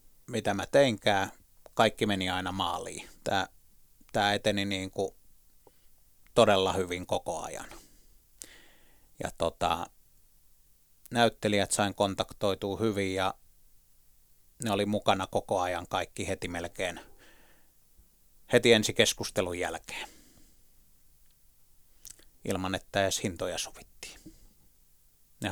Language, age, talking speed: Finnish, 30-49, 95 wpm